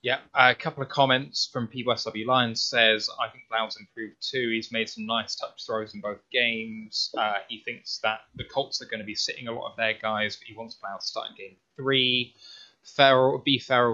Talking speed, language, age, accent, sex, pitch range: 225 wpm, English, 10-29, British, male, 110-130 Hz